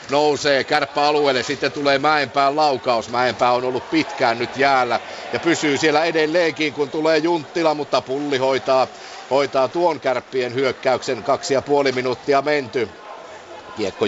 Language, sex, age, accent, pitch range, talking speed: Finnish, male, 50-69, native, 120-140 Hz, 135 wpm